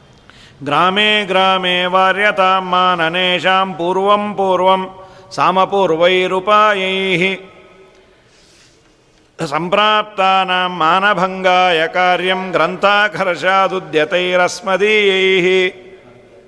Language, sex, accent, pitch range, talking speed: Kannada, male, native, 175-210 Hz, 45 wpm